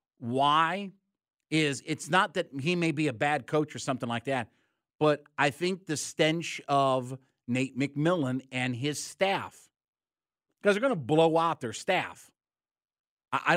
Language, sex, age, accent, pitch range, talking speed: English, male, 50-69, American, 125-165 Hz, 155 wpm